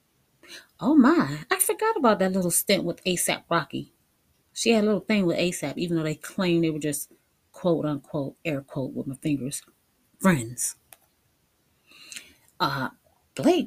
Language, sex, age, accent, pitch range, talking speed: English, female, 30-49, American, 170-240 Hz, 155 wpm